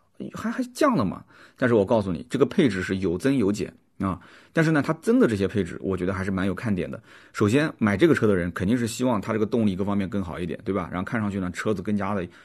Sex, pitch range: male, 95-120 Hz